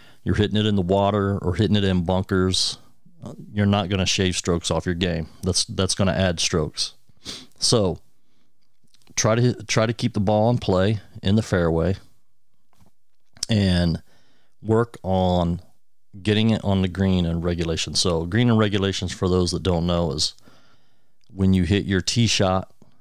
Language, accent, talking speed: English, American, 165 wpm